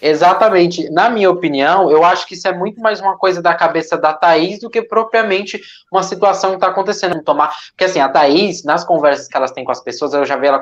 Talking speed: 230 wpm